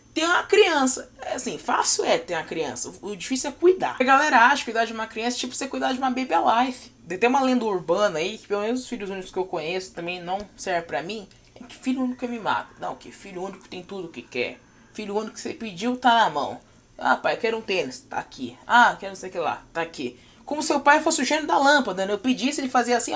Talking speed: 275 wpm